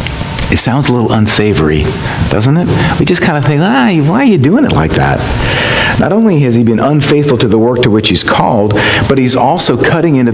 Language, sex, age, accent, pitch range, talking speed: English, male, 40-59, American, 110-155 Hz, 220 wpm